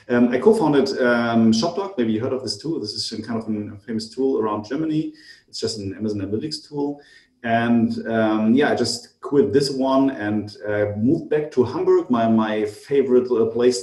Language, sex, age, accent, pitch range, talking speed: English, male, 30-49, German, 110-135 Hz, 195 wpm